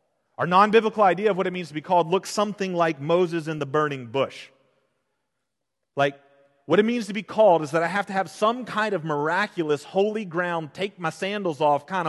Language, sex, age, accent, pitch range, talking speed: English, male, 40-59, American, 125-195 Hz, 210 wpm